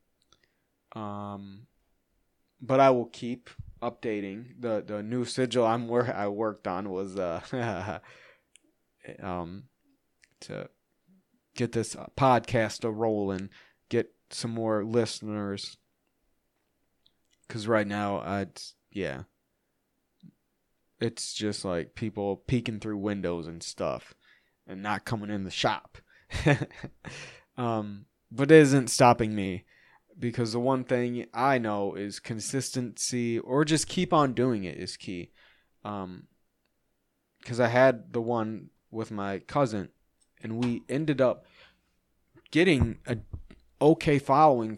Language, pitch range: English, 100-125 Hz